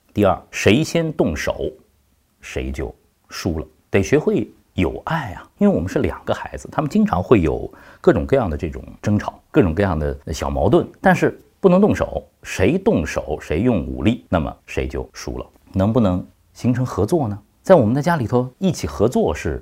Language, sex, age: Chinese, male, 50-69